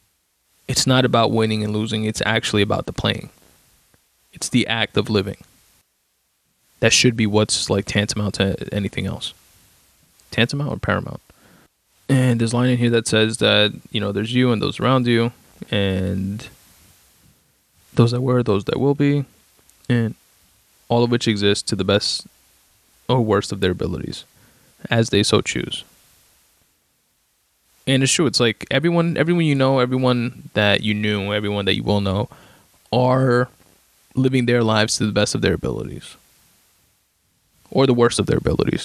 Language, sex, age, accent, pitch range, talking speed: English, male, 20-39, American, 105-125 Hz, 160 wpm